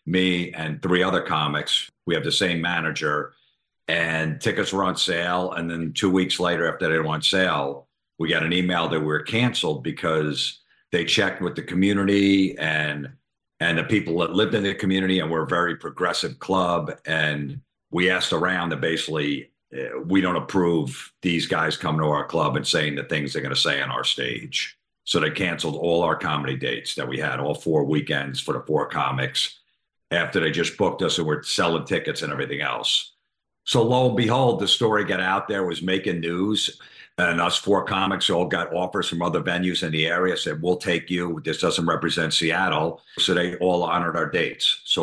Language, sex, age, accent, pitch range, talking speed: English, male, 50-69, American, 80-95 Hz, 200 wpm